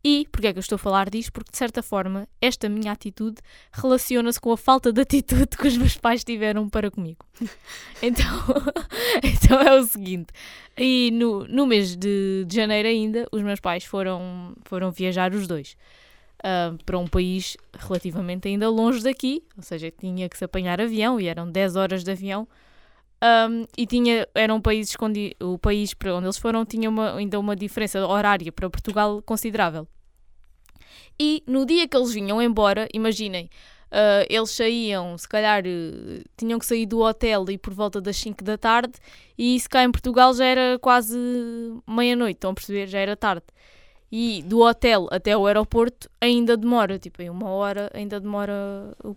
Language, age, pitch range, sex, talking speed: Portuguese, 10-29, 195-235 Hz, female, 170 wpm